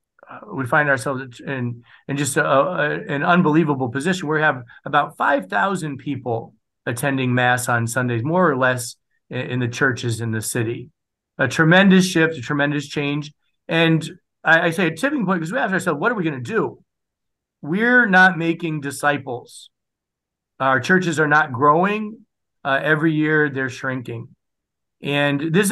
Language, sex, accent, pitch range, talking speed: English, male, American, 140-185 Hz, 165 wpm